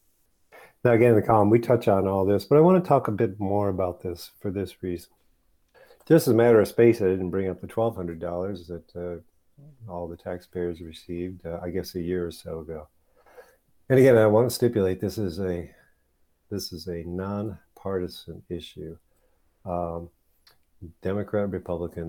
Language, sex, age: English, male, 50-69